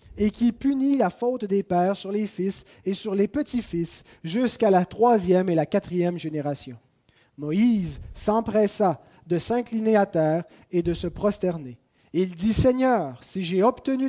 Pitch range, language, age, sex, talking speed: 155-205 Hz, French, 30-49, male, 160 wpm